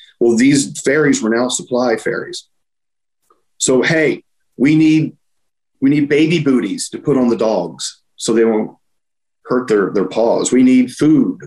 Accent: American